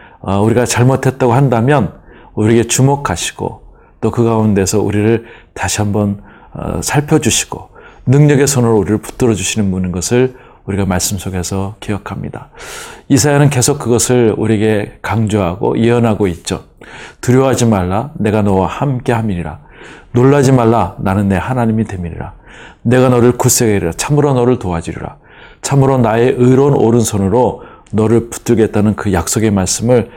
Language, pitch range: Korean, 105-130 Hz